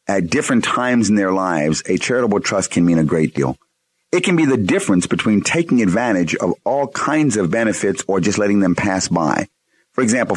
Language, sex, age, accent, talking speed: English, male, 50-69, American, 205 wpm